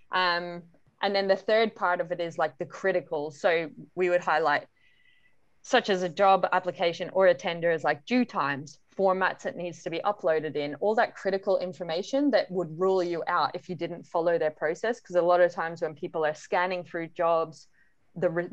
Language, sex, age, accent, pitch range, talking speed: English, female, 20-39, Australian, 165-200 Hz, 205 wpm